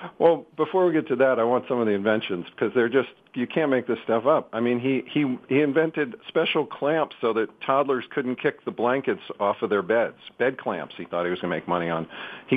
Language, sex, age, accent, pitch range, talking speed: English, male, 50-69, American, 120-155 Hz, 250 wpm